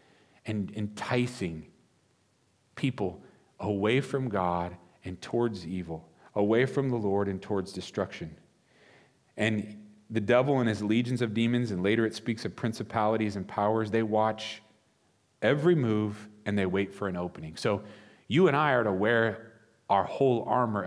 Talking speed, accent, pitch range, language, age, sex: 150 wpm, American, 100-120 Hz, English, 40-59, male